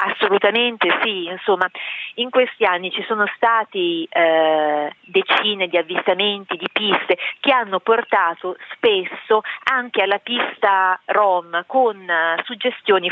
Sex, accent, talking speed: female, native, 120 wpm